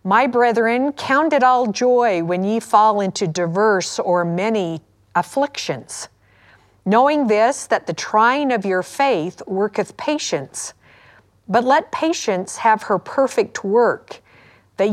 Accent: American